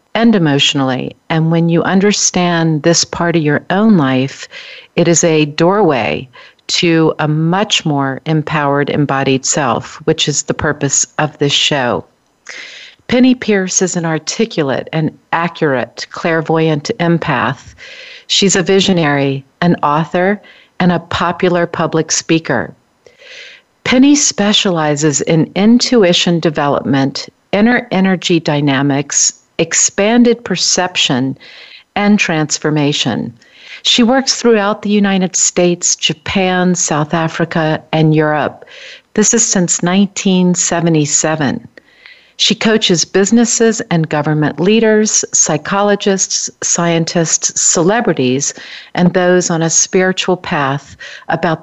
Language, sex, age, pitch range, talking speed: English, female, 50-69, 155-200 Hz, 105 wpm